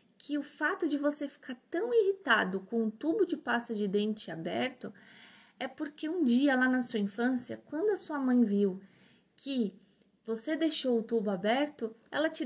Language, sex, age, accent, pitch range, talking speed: Portuguese, female, 20-39, Brazilian, 220-295 Hz, 180 wpm